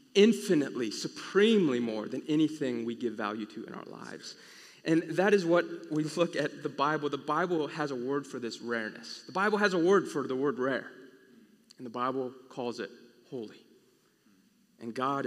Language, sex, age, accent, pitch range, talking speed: English, male, 30-49, American, 120-165 Hz, 180 wpm